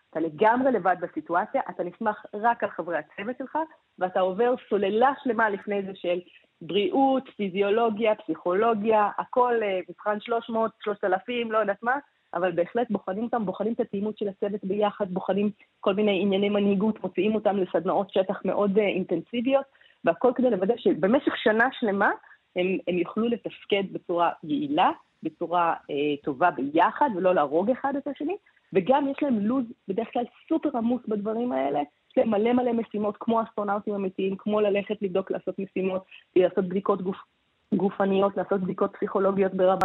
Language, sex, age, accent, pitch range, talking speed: Hebrew, female, 30-49, native, 185-235 Hz, 155 wpm